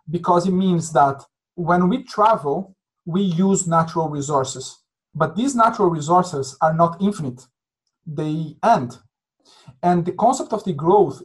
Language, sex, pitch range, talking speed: English, male, 150-185 Hz, 140 wpm